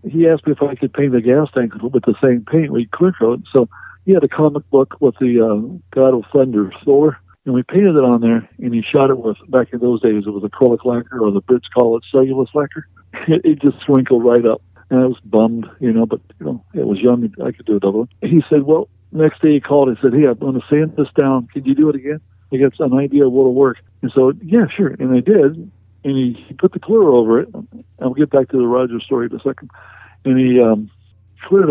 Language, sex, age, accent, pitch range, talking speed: English, male, 60-79, American, 115-145 Hz, 255 wpm